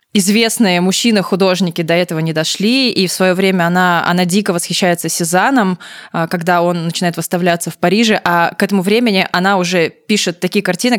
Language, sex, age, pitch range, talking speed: Russian, female, 20-39, 175-200 Hz, 165 wpm